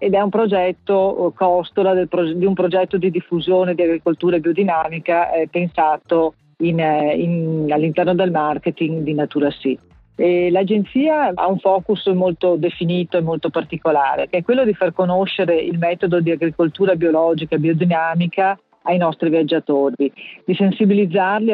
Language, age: Italian, 40-59